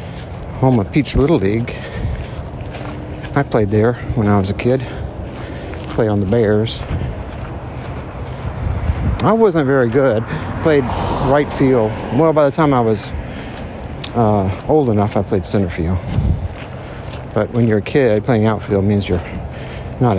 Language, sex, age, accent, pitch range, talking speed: English, male, 60-79, American, 100-125 Hz, 140 wpm